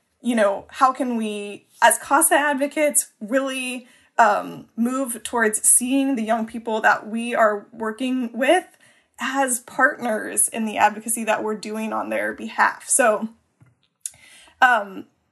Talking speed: 135 wpm